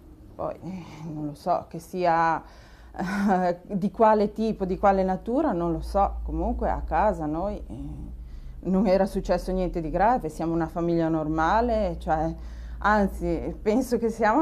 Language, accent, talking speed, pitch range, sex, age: Italian, native, 145 wpm, 165-195 Hz, female, 30-49